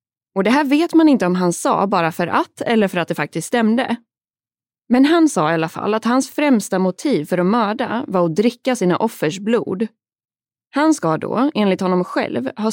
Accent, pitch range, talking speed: native, 170-240 Hz, 210 wpm